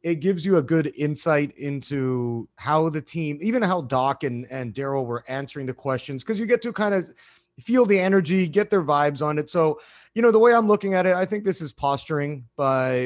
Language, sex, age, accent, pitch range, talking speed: English, male, 30-49, American, 130-165 Hz, 225 wpm